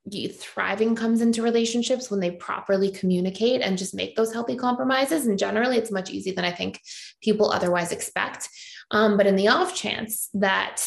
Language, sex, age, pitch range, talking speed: English, female, 20-39, 195-245 Hz, 175 wpm